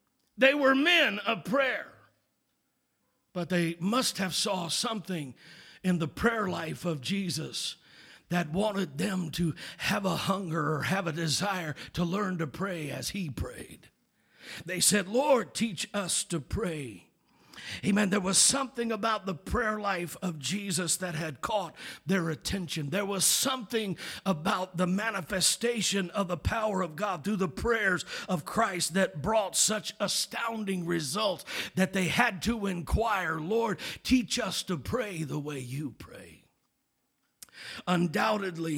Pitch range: 165-205 Hz